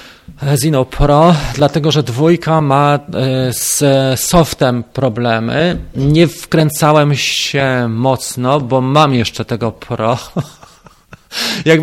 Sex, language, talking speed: male, Polish, 100 wpm